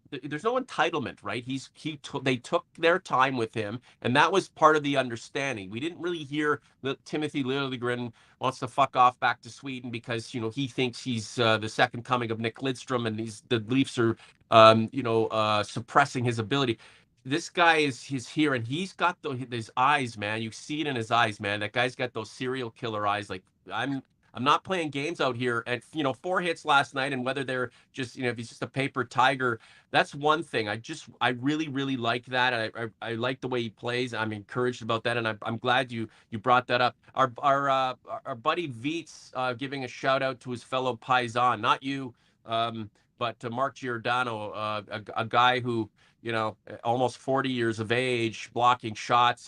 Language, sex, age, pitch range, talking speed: English, male, 40-59, 115-135 Hz, 215 wpm